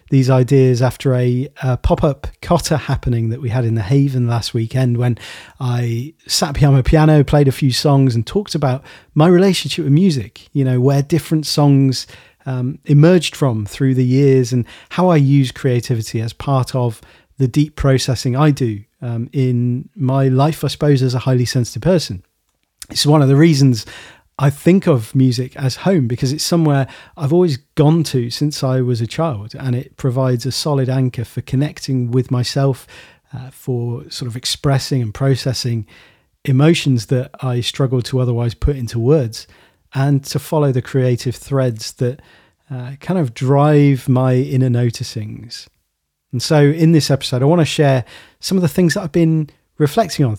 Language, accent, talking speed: English, British, 180 wpm